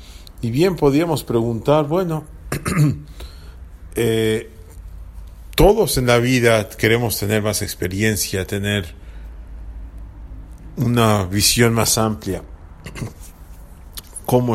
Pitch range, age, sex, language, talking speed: 85-115 Hz, 40-59, male, English, 85 wpm